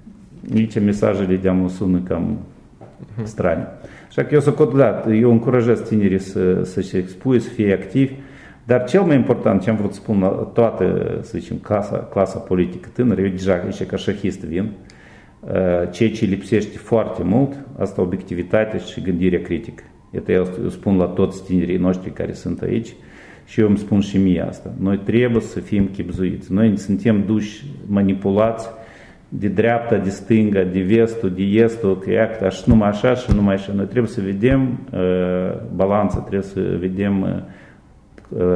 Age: 50-69